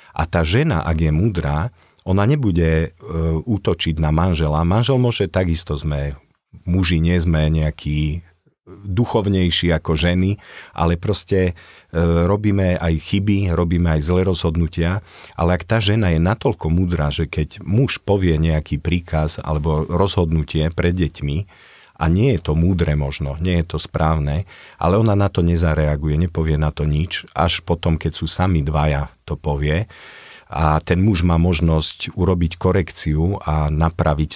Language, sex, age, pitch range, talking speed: Slovak, male, 40-59, 80-90 Hz, 145 wpm